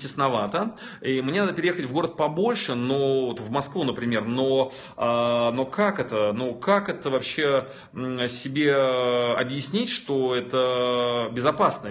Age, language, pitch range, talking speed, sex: 20-39, Russian, 125-175 Hz, 140 wpm, male